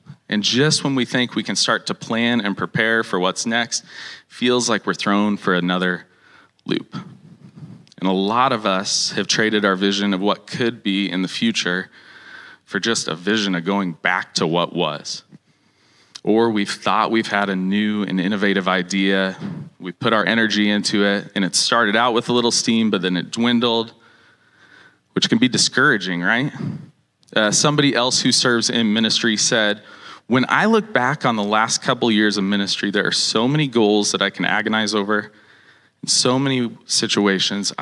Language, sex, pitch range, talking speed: English, male, 100-115 Hz, 180 wpm